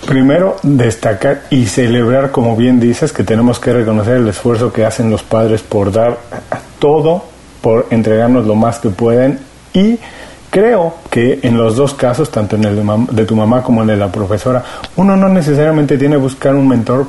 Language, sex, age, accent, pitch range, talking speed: Spanish, male, 40-59, Mexican, 115-145 Hz, 195 wpm